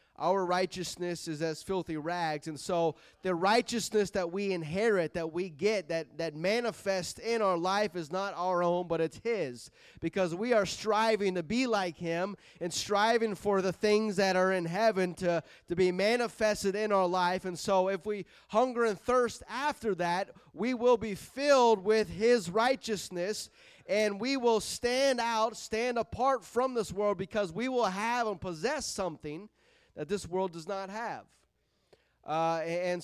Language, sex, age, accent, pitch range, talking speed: English, male, 30-49, American, 165-205 Hz, 170 wpm